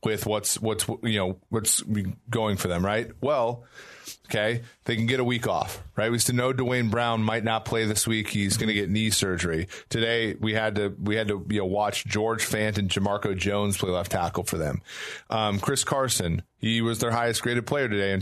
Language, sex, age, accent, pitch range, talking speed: English, male, 30-49, American, 100-120 Hz, 220 wpm